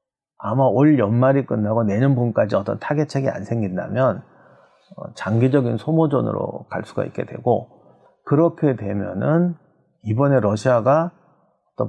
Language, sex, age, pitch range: Korean, male, 40-59, 110-155 Hz